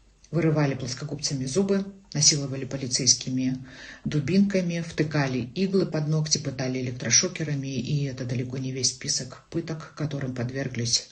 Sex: female